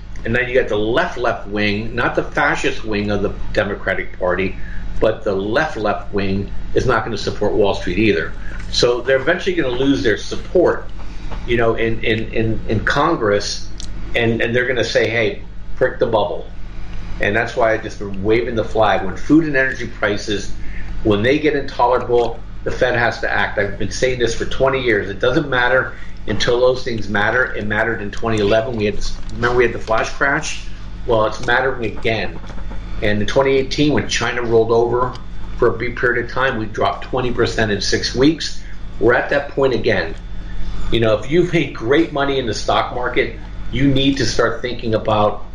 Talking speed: 195 wpm